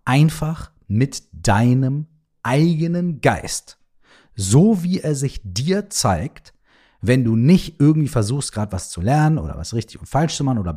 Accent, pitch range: German, 105-150 Hz